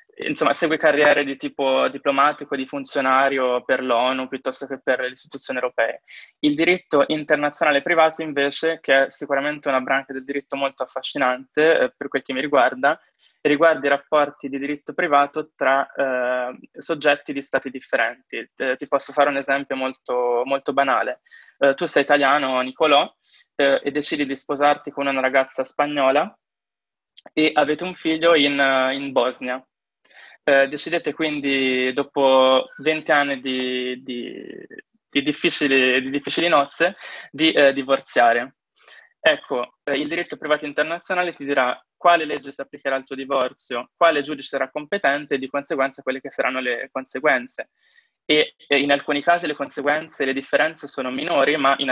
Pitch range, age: 135-150 Hz, 20-39